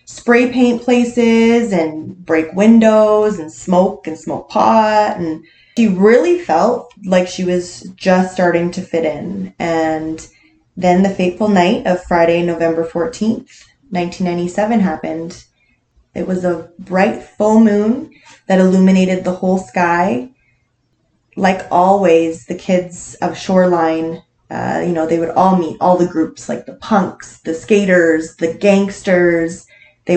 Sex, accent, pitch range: female, American, 165-195 Hz